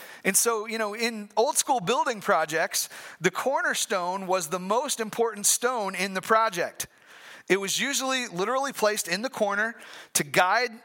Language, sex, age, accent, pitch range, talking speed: English, male, 40-59, American, 195-250 Hz, 160 wpm